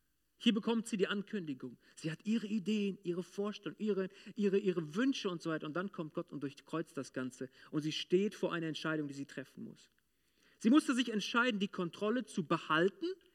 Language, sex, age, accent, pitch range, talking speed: German, male, 40-59, German, 155-215 Hz, 200 wpm